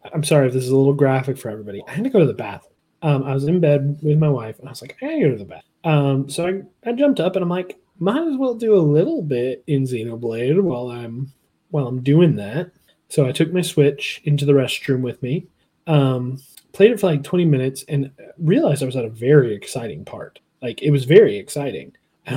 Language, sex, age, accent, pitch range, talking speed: English, male, 20-39, American, 130-155 Hz, 245 wpm